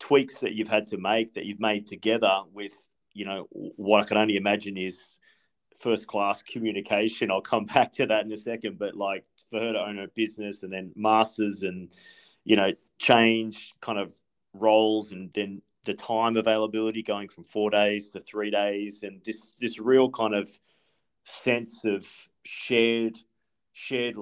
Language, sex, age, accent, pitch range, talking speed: English, male, 30-49, Australian, 95-110 Hz, 175 wpm